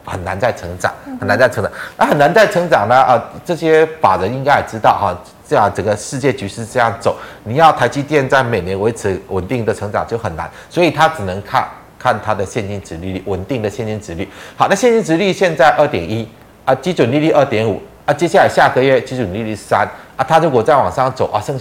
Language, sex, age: Chinese, male, 30-49